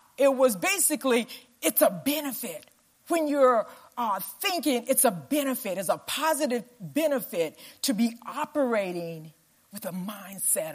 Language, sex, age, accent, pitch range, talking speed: English, female, 50-69, American, 200-275 Hz, 130 wpm